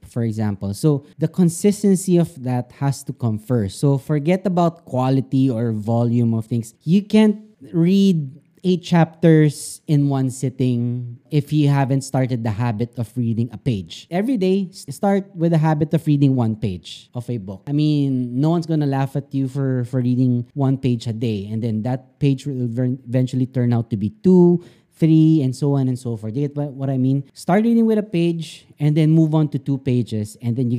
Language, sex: English, male